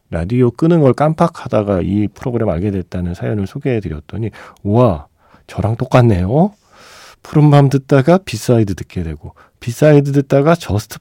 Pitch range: 95-140 Hz